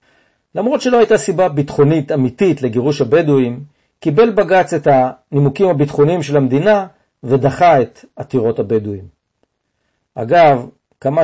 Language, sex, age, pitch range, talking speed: Hebrew, male, 50-69, 130-185 Hz, 110 wpm